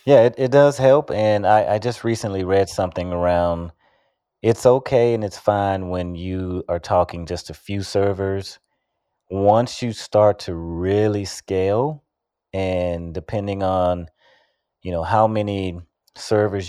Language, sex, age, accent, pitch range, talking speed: English, male, 30-49, American, 85-100 Hz, 145 wpm